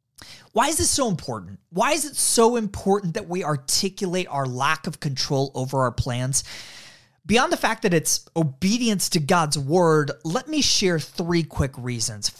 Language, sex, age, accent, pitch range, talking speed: English, male, 30-49, American, 145-225 Hz, 170 wpm